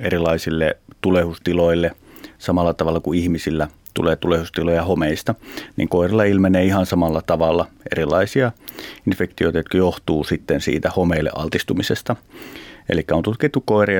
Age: 30-49